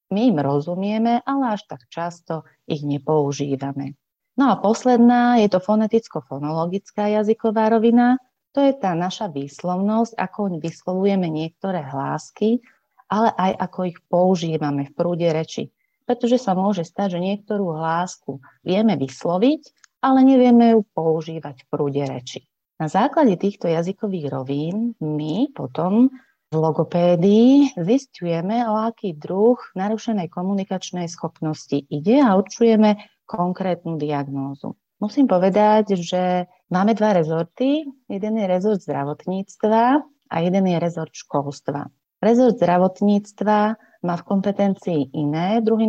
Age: 30-49